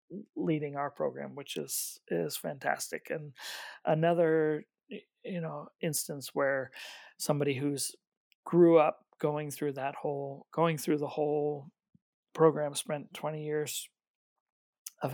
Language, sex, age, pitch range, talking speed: English, male, 40-59, 130-150 Hz, 120 wpm